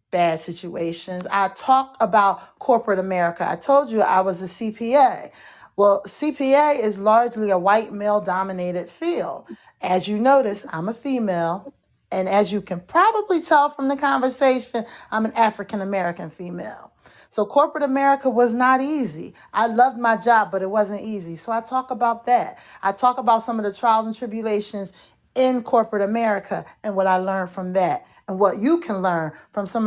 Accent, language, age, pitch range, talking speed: American, English, 30-49, 190-255 Hz, 175 wpm